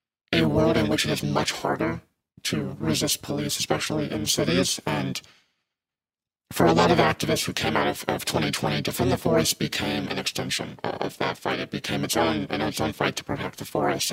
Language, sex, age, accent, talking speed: English, male, 50-69, American, 205 wpm